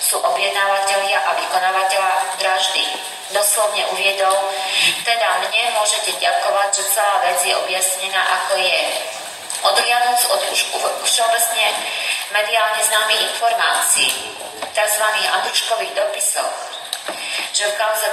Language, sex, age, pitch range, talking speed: Slovak, female, 30-49, 185-220 Hz, 105 wpm